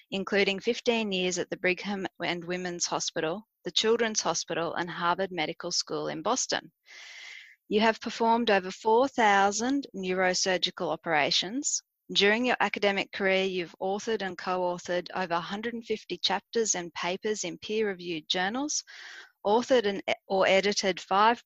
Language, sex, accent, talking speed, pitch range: English, female, Australian, 125 wpm, 175-220 Hz